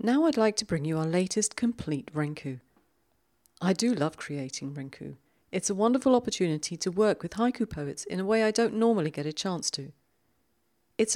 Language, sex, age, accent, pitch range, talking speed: English, female, 40-59, British, 140-220 Hz, 190 wpm